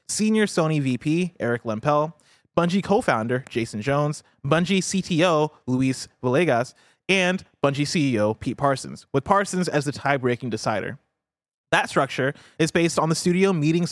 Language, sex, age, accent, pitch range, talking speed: English, male, 20-39, American, 125-180 Hz, 140 wpm